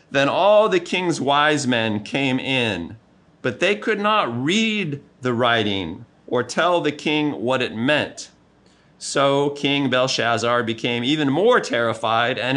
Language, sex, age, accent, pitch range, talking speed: English, male, 40-59, American, 120-155 Hz, 145 wpm